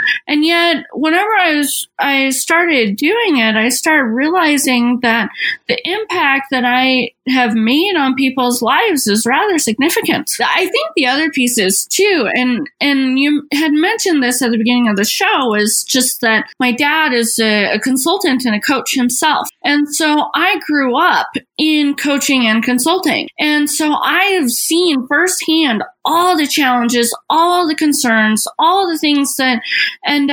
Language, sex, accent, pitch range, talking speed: English, female, American, 250-325 Hz, 160 wpm